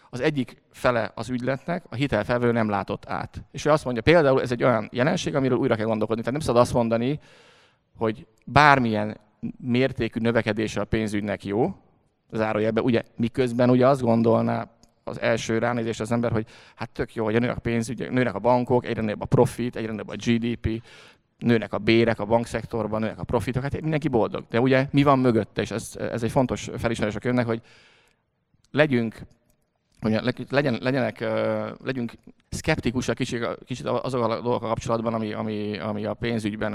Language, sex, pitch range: Hungarian, male, 110-125 Hz